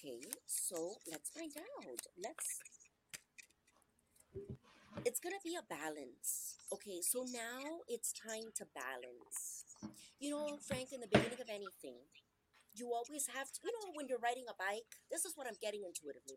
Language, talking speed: English, 160 wpm